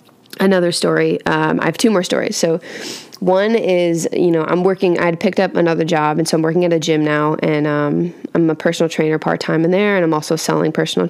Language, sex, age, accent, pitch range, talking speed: English, female, 20-39, American, 155-185 Hz, 225 wpm